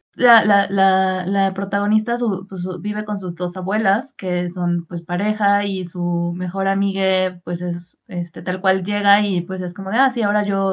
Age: 20-39